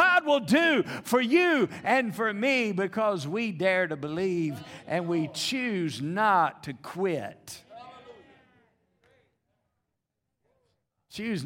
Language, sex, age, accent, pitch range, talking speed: English, male, 50-69, American, 135-230 Hz, 105 wpm